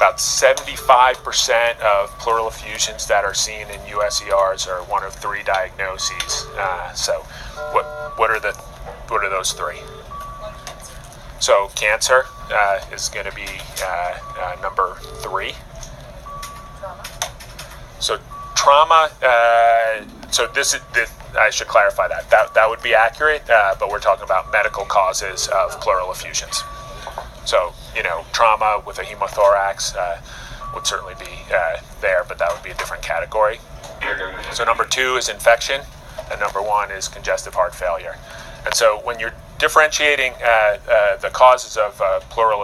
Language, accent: English, American